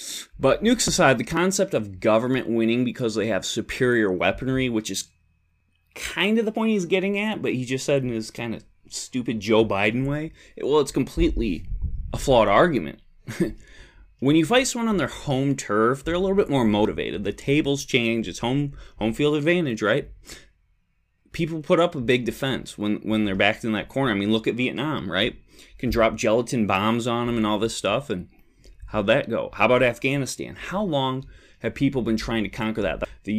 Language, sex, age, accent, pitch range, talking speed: English, male, 20-39, American, 110-145 Hz, 200 wpm